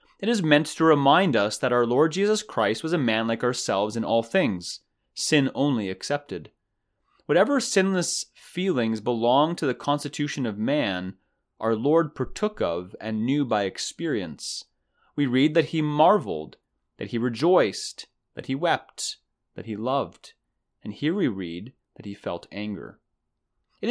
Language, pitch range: English, 105-150 Hz